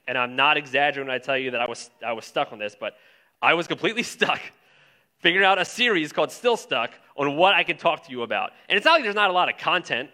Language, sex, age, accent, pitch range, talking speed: English, male, 30-49, American, 135-180 Hz, 265 wpm